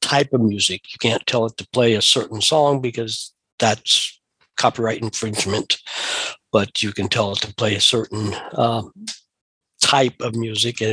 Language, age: English, 60-79